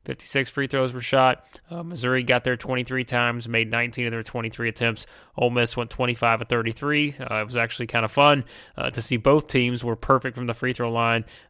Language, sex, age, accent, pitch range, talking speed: English, male, 20-39, American, 115-130 Hz, 215 wpm